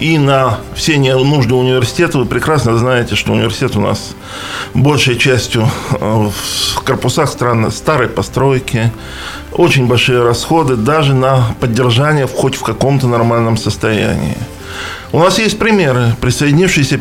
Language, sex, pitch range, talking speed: Russian, male, 110-150 Hz, 125 wpm